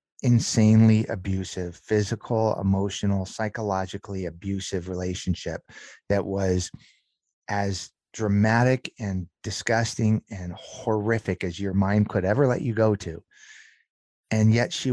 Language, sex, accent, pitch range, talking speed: English, male, American, 100-120 Hz, 110 wpm